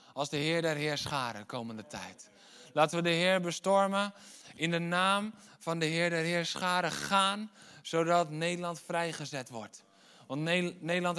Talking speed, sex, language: 150 wpm, male, Dutch